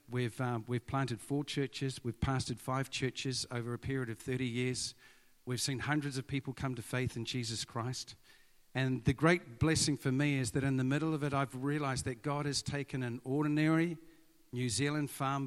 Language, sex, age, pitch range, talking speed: English, male, 50-69, 125-150 Hz, 200 wpm